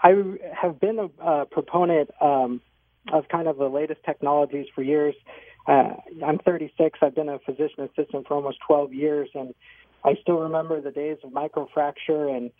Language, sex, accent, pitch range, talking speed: English, male, American, 130-155 Hz, 170 wpm